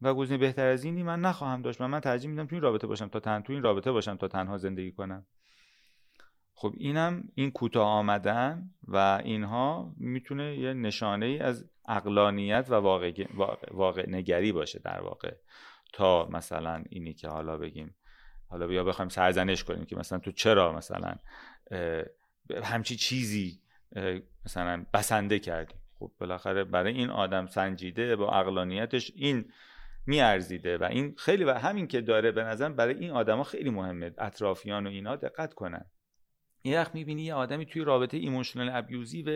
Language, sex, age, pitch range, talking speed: Persian, male, 30-49, 95-145 Hz, 160 wpm